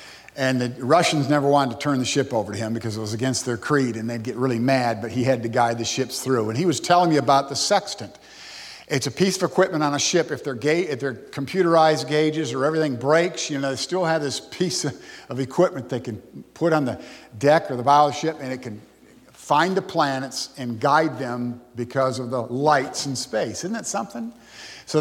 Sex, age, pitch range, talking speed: male, 50-69, 125-160 Hz, 230 wpm